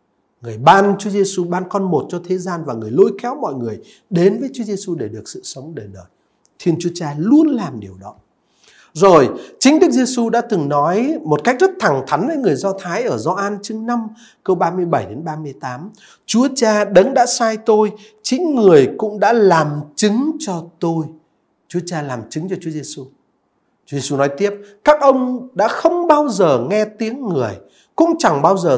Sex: male